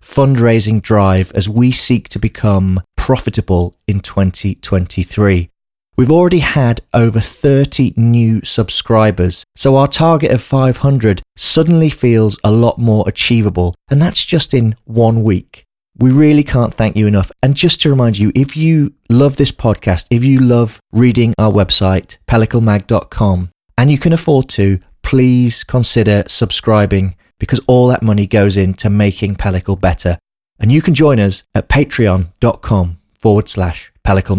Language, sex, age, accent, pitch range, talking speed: English, male, 30-49, British, 95-125 Hz, 145 wpm